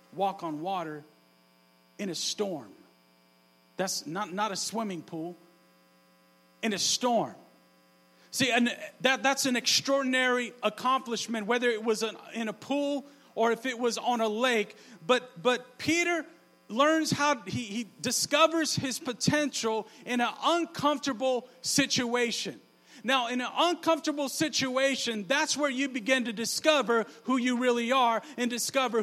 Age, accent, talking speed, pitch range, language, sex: 40-59, American, 140 wpm, 210-275 Hz, English, male